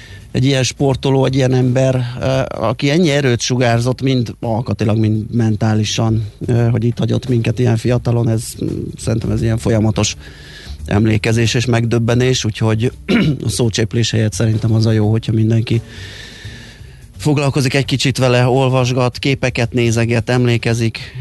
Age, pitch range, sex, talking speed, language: 30-49, 115-135 Hz, male, 130 wpm, Hungarian